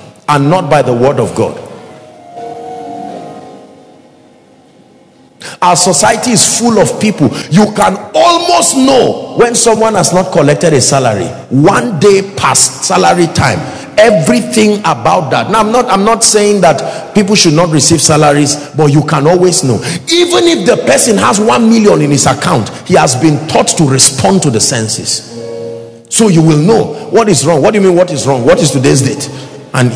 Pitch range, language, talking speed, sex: 140-210 Hz, English, 175 wpm, male